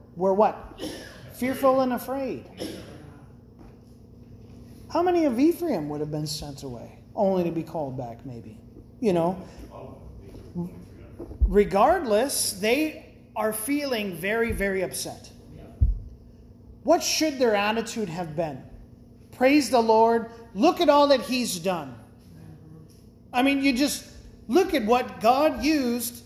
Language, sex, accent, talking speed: English, male, American, 120 wpm